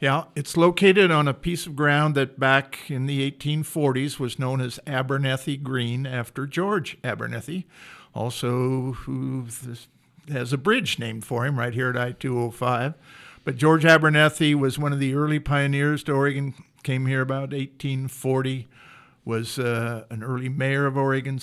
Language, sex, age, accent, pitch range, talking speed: English, male, 50-69, American, 125-150 Hz, 155 wpm